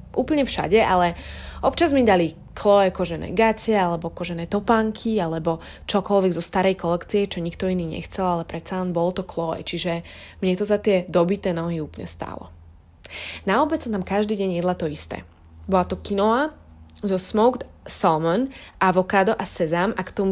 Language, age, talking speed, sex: Slovak, 20-39, 165 wpm, female